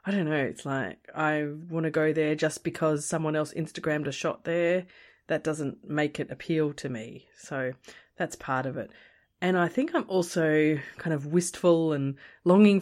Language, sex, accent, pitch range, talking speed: English, female, Australian, 140-175 Hz, 185 wpm